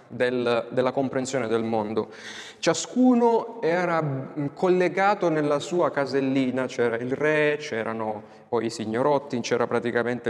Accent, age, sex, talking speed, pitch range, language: native, 20-39, male, 110 wpm, 120-160 Hz, Italian